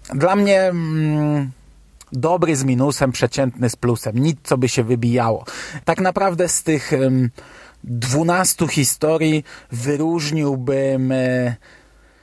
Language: Polish